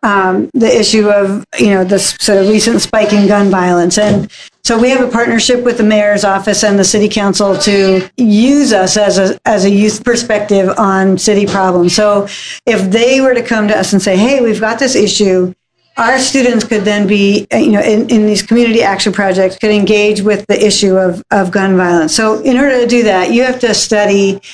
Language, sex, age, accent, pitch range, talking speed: English, female, 50-69, American, 200-240 Hz, 215 wpm